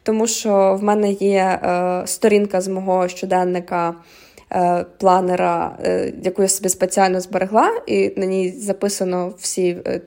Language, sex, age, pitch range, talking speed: Ukrainian, female, 20-39, 185-205 Hz, 145 wpm